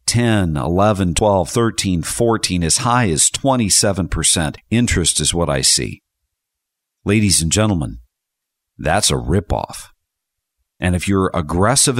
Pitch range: 85-110 Hz